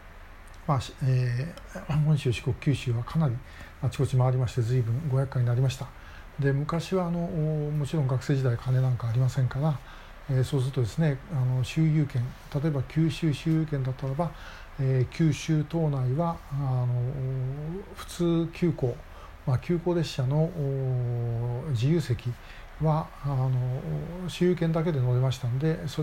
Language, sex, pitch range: Japanese, male, 125-155 Hz